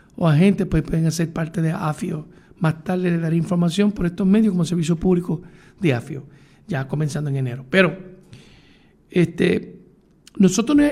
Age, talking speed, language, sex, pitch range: 60-79, 155 wpm, Spanish, male, 160-195 Hz